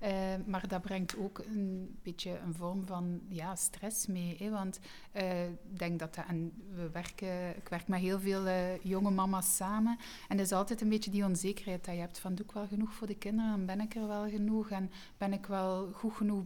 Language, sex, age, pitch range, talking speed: Dutch, female, 30-49, 180-205 Hz, 220 wpm